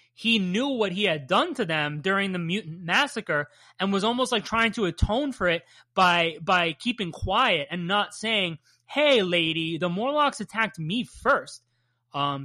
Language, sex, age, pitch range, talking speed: English, male, 20-39, 175-250 Hz, 175 wpm